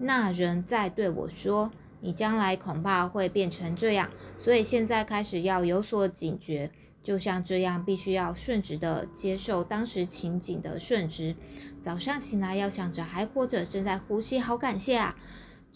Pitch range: 175-215 Hz